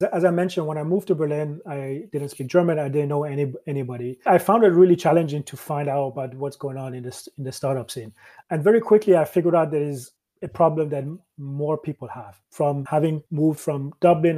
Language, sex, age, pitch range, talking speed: English, male, 30-49, 140-165 Hz, 215 wpm